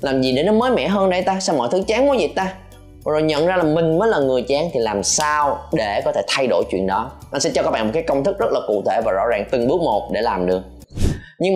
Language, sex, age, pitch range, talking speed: Vietnamese, male, 20-39, 110-155 Hz, 300 wpm